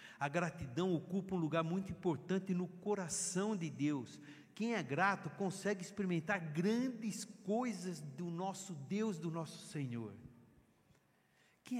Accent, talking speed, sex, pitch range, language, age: Brazilian, 125 wpm, male, 170-245 Hz, Portuguese, 60-79